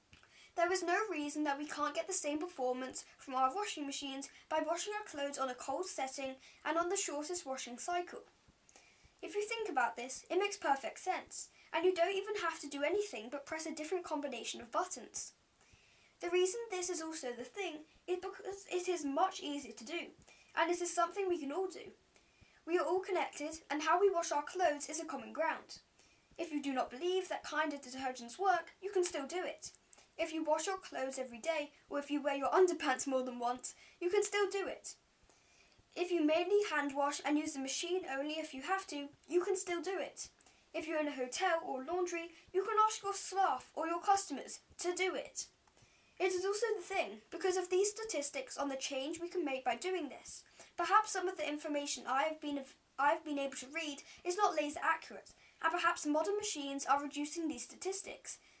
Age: 10-29